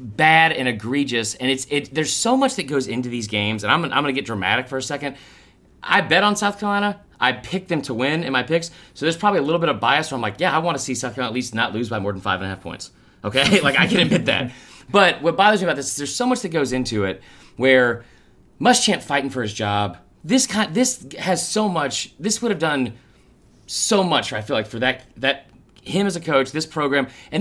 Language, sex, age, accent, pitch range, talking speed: English, male, 30-49, American, 125-185 Hz, 255 wpm